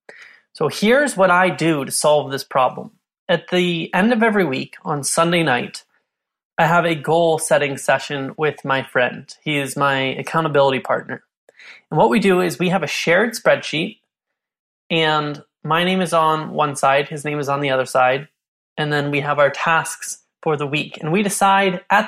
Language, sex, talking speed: English, male, 190 wpm